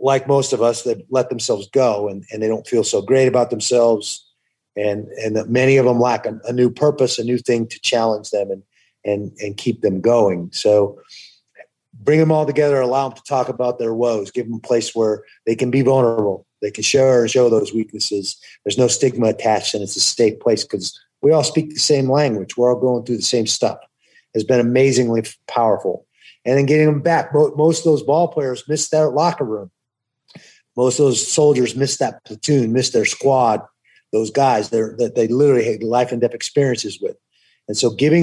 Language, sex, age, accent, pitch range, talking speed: English, male, 30-49, American, 110-135 Hz, 210 wpm